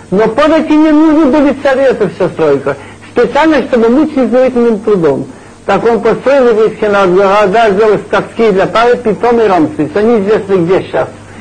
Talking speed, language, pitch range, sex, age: 145 wpm, Russian, 200-255 Hz, male, 60-79